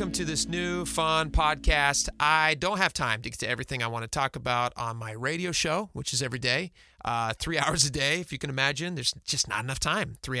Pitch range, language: 135-165 Hz, English